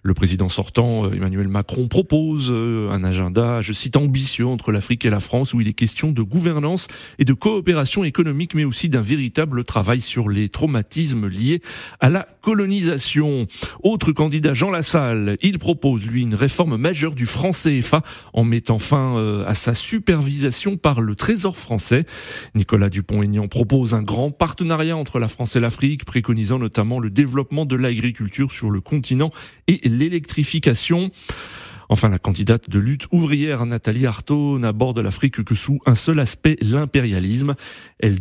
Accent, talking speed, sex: French, 155 wpm, male